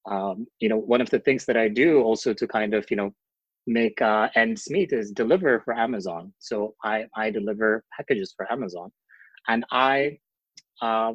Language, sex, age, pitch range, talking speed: English, male, 30-49, 110-155 Hz, 185 wpm